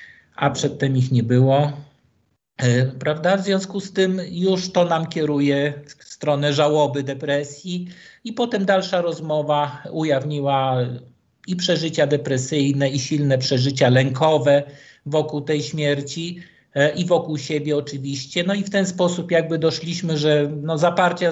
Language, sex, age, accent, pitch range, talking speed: Polish, male, 50-69, native, 140-170 Hz, 130 wpm